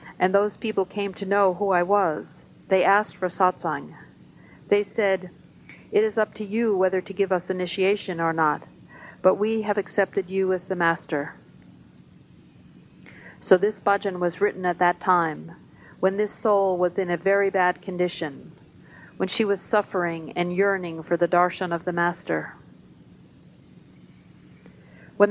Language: English